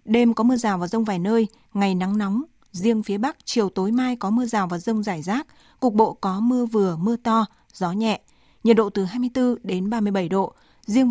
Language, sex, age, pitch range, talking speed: Vietnamese, female, 20-39, 195-235 Hz, 220 wpm